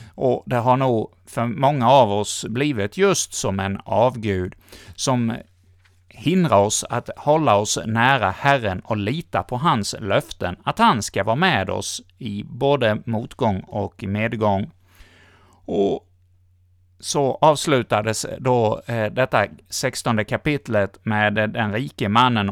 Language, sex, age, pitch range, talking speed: Swedish, male, 60-79, 100-135 Hz, 130 wpm